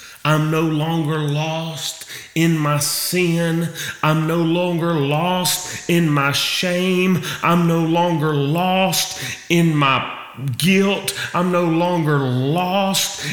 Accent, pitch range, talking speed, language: American, 145-180 Hz, 115 wpm, English